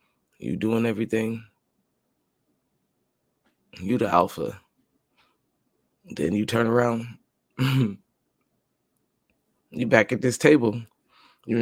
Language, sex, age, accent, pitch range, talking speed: English, male, 20-39, American, 110-135 Hz, 85 wpm